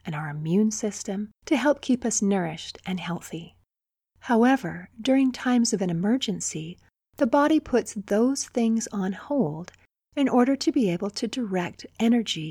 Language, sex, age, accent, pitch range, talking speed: English, female, 40-59, American, 180-245 Hz, 155 wpm